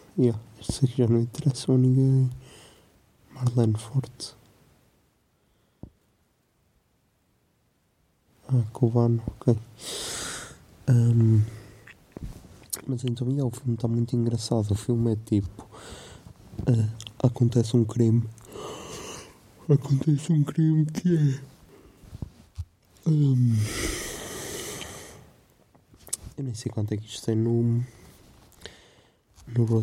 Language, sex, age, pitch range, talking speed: Portuguese, male, 20-39, 105-120 Hz, 85 wpm